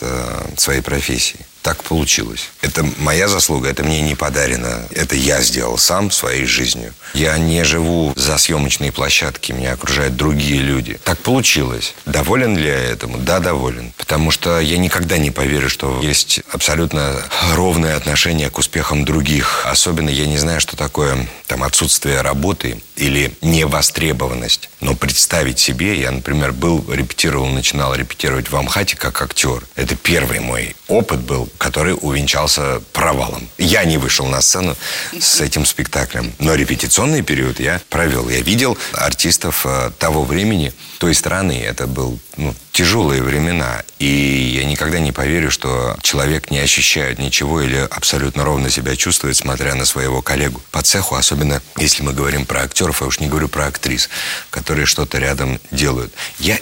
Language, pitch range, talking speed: Russian, 65-80 Hz, 150 wpm